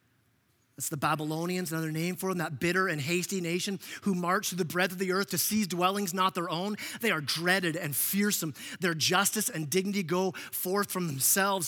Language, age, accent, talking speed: English, 30-49, American, 200 wpm